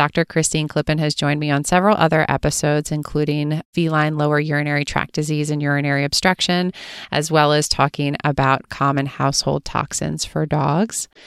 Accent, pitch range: American, 145-165 Hz